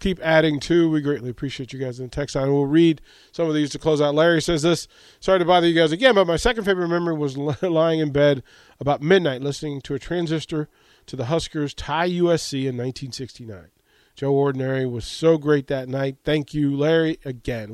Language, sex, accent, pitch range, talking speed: English, male, American, 130-160 Hz, 210 wpm